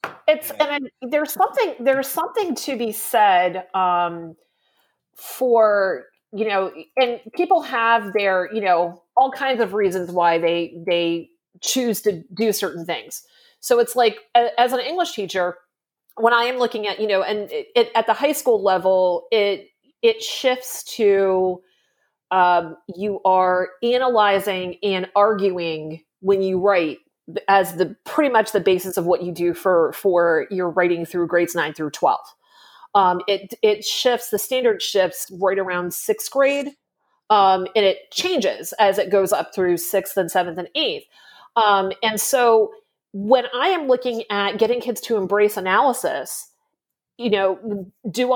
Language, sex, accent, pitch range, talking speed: English, female, American, 185-255 Hz, 160 wpm